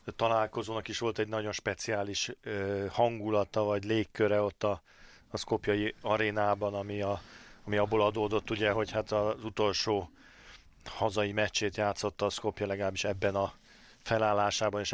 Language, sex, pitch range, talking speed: Hungarian, male, 100-110 Hz, 140 wpm